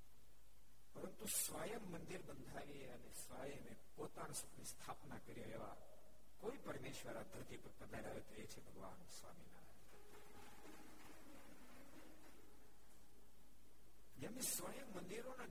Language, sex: Gujarati, male